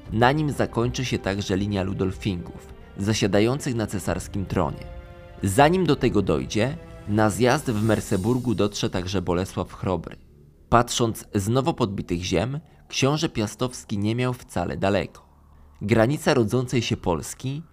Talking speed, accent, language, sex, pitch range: 130 wpm, native, Polish, male, 95-125 Hz